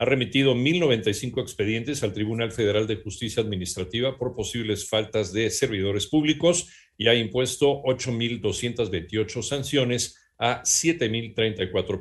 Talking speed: 115 wpm